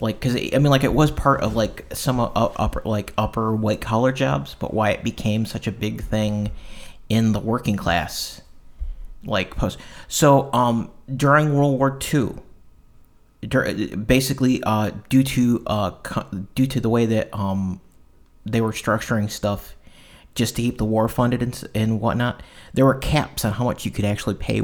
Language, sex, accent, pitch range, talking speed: English, male, American, 105-125 Hz, 180 wpm